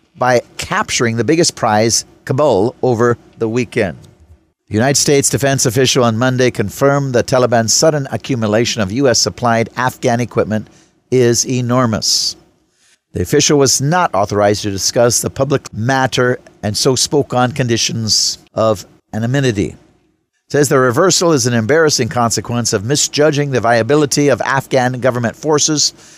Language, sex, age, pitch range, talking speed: English, male, 50-69, 115-140 Hz, 135 wpm